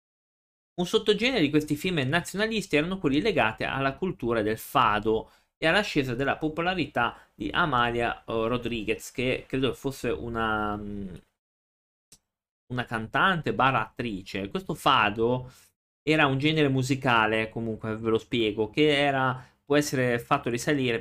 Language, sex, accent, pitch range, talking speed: Italian, male, native, 110-150 Hz, 125 wpm